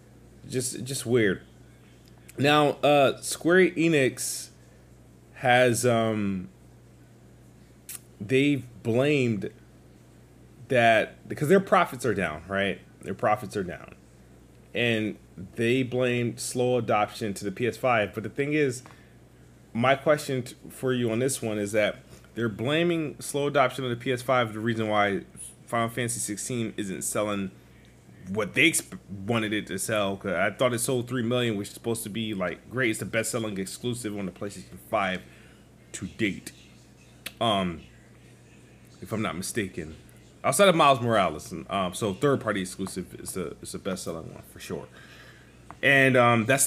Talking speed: 150 wpm